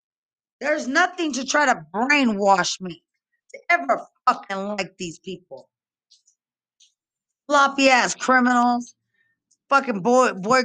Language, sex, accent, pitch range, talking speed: English, female, American, 220-285 Hz, 100 wpm